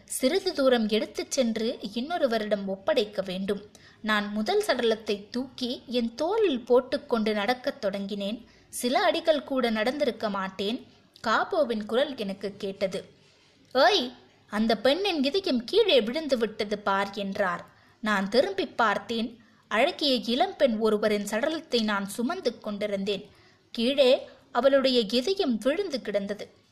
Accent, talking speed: native, 110 wpm